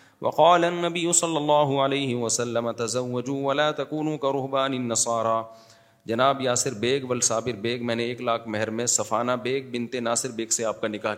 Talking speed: 160 wpm